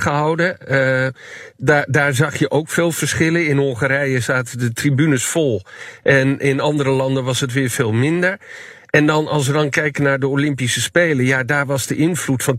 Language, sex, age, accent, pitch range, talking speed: Dutch, male, 50-69, Dutch, 130-150 Hz, 190 wpm